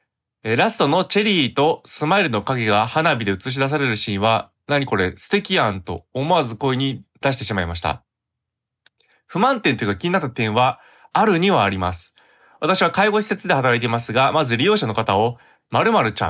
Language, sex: Japanese, male